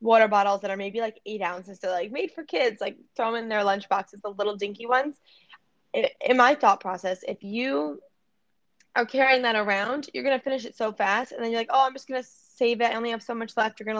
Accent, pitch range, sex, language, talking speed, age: American, 200-240 Hz, female, English, 260 wpm, 10-29